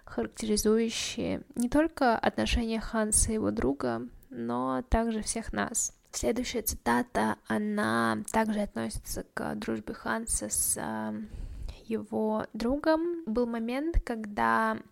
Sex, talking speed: female, 105 wpm